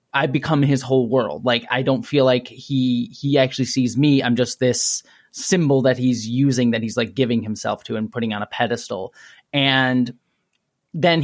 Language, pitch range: English, 125-150 Hz